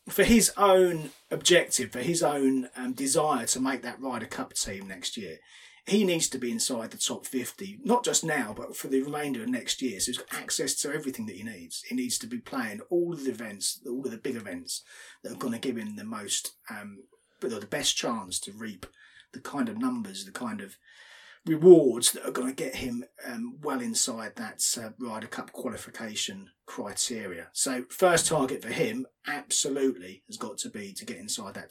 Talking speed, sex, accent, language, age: 205 wpm, male, British, English, 30-49